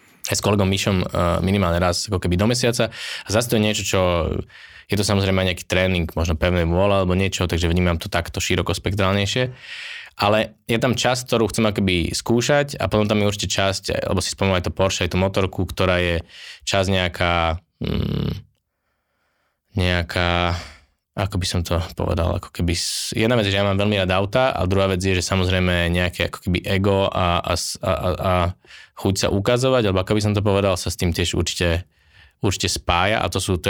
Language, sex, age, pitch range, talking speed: Slovak, male, 20-39, 90-100 Hz, 200 wpm